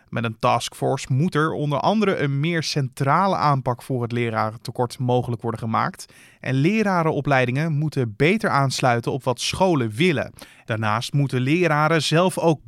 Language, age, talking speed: Dutch, 20-39, 145 wpm